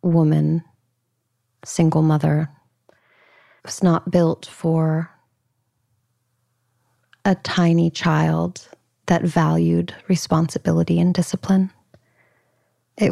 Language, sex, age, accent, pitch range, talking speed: English, female, 30-49, American, 130-185 Hz, 75 wpm